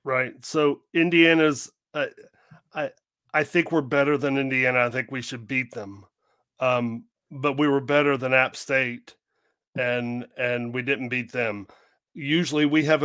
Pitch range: 130-155 Hz